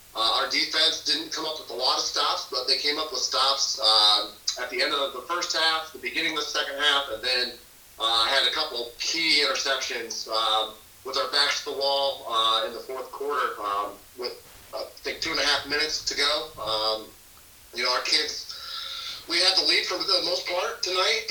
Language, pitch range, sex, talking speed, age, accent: English, 120-155 Hz, male, 215 wpm, 30-49, American